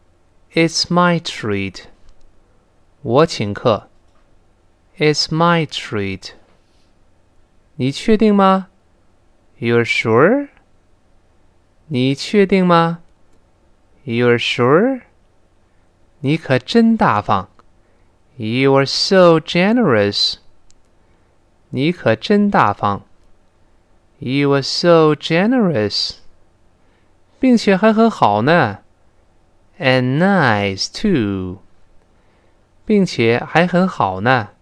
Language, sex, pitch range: Chinese, male, 90-140 Hz